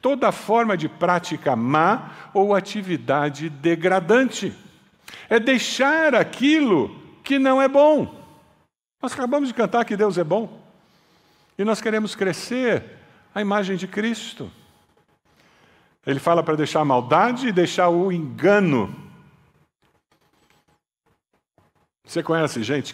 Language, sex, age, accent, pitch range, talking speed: Portuguese, male, 60-79, Brazilian, 145-210 Hz, 115 wpm